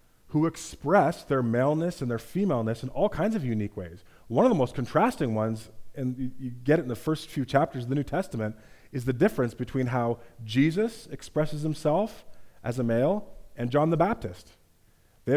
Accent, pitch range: American, 115-145 Hz